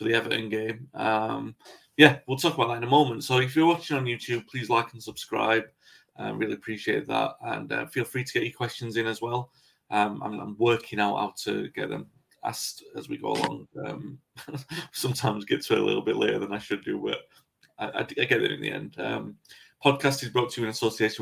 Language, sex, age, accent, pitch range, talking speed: English, male, 30-49, British, 110-135 Hz, 230 wpm